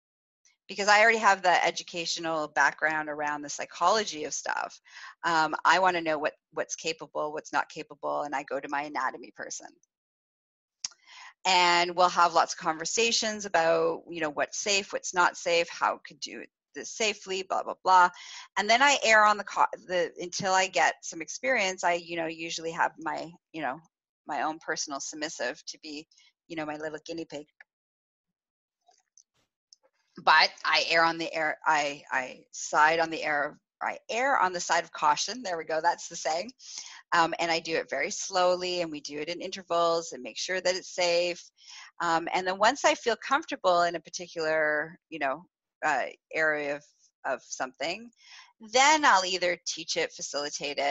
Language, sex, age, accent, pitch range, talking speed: English, female, 30-49, American, 155-190 Hz, 165 wpm